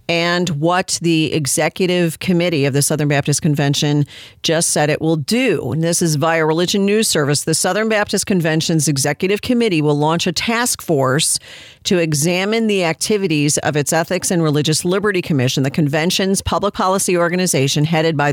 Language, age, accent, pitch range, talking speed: English, 40-59, American, 150-180 Hz, 165 wpm